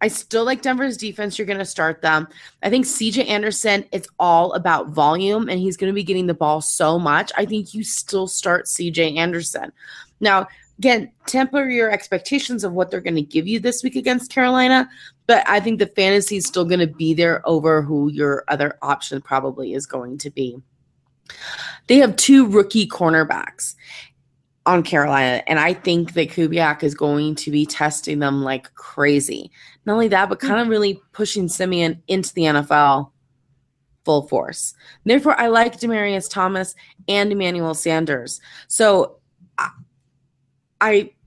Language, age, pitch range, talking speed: English, 20-39, 150-205 Hz, 170 wpm